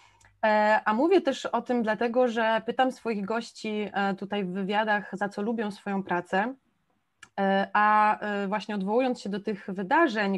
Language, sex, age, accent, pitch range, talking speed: Polish, female, 20-39, native, 190-215 Hz, 145 wpm